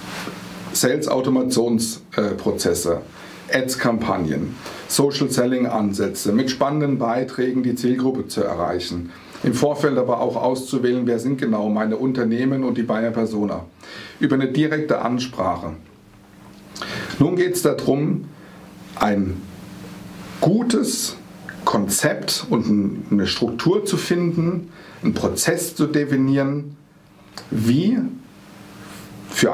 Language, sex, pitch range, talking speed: German, male, 105-140 Hz, 95 wpm